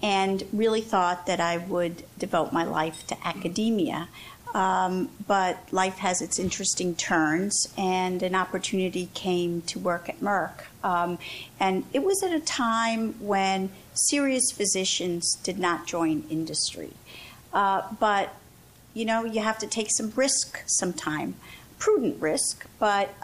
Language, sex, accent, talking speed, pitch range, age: English, female, American, 140 wpm, 175-215 Hz, 50-69